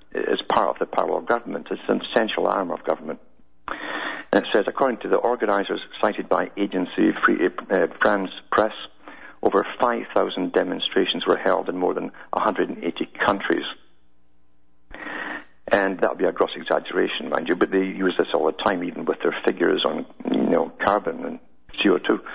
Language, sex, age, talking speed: English, male, 60-79, 170 wpm